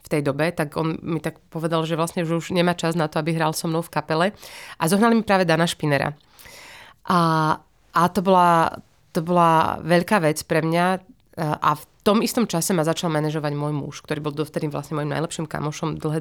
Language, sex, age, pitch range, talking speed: Slovak, female, 30-49, 155-185 Hz, 205 wpm